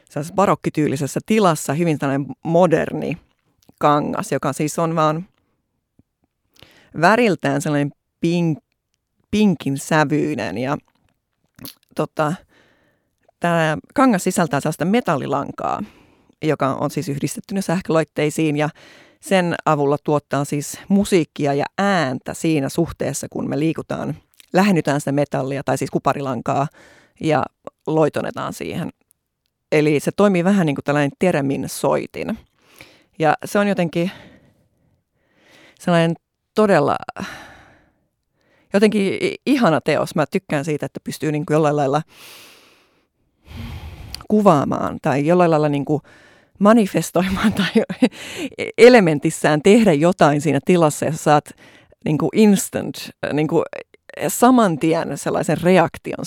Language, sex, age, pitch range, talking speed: Finnish, female, 30-49, 145-195 Hz, 100 wpm